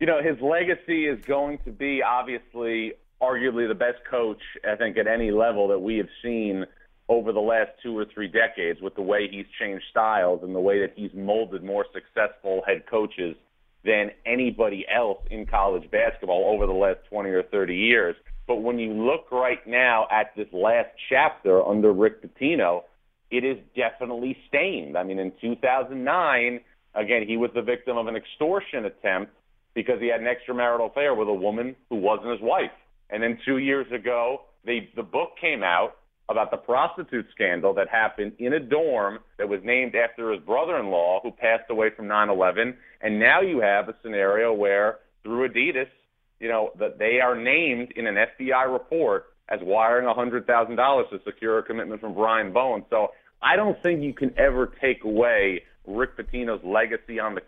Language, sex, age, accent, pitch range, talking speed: English, male, 40-59, American, 105-125 Hz, 180 wpm